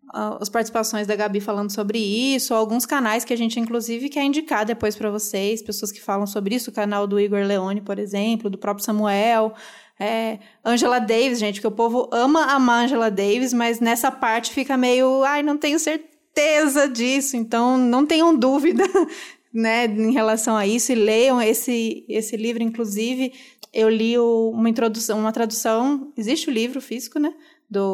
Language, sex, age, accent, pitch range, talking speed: Portuguese, female, 20-39, Brazilian, 215-250 Hz, 180 wpm